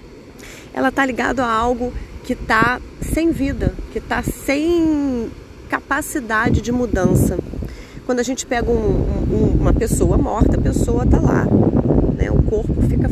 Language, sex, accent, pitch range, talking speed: Portuguese, female, Brazilian, 205-275 Hz, 135 wpm